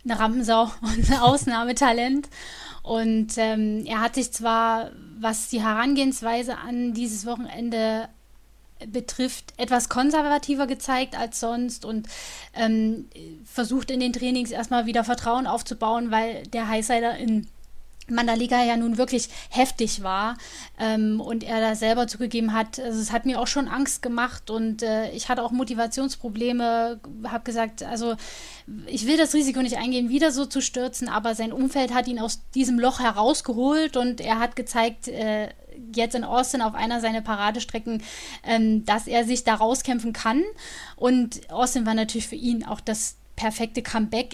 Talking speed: 155 wpm